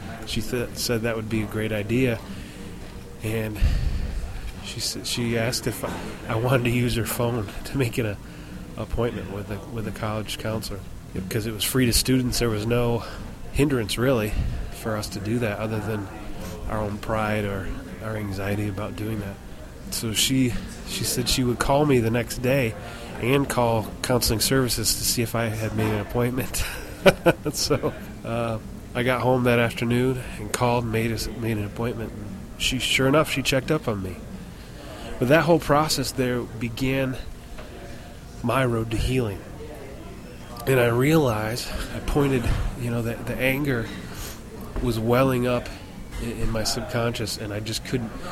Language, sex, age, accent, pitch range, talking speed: English, male, 20-39, American, 105-125 Hz, 170 wpm